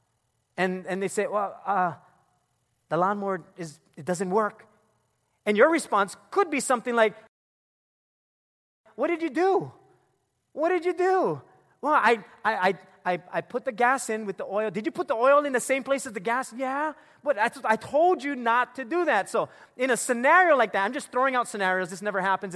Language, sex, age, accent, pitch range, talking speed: English, male, 30-49, American, 175-270 Hz, 190 wpm